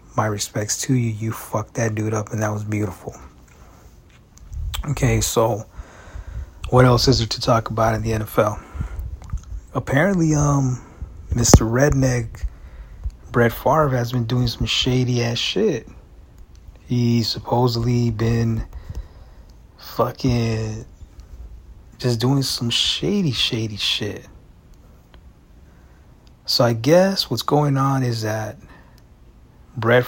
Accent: American